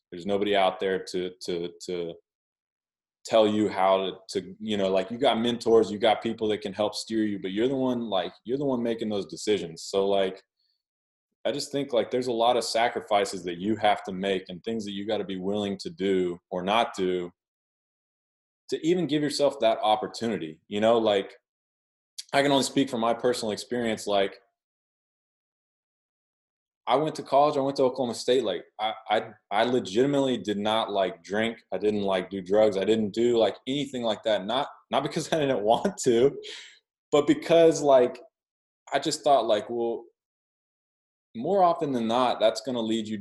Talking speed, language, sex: 190 wpm, English, male